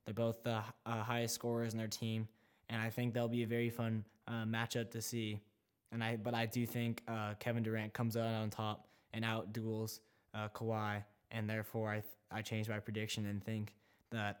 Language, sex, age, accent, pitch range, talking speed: English, male, 10-29, American, 110-125 Hz, 210 wpm